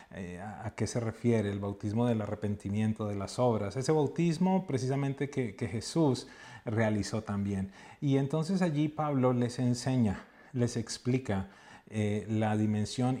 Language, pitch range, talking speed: English, 105-130 Hz, 135 wpm